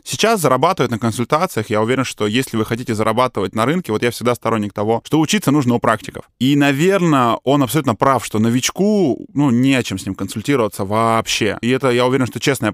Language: Russian